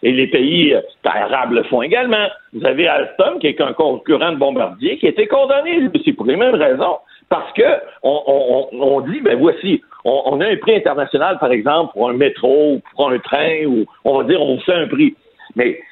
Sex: male